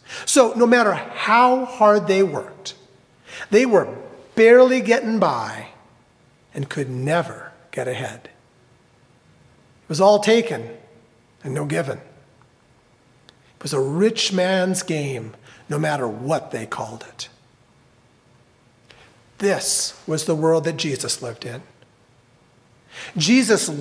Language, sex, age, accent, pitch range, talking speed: English, male, 40-59, American, 125-210 Hz, 115 wpm